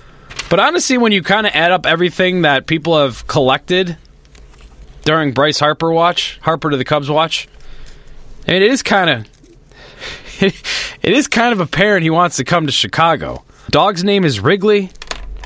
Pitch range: 130-175 Hz